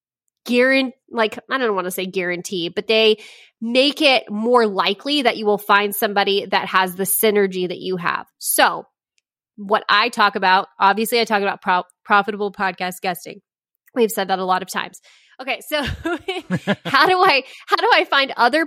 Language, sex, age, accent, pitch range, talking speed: English, female, 20-39, American, 195-235 Hz, 180 wpm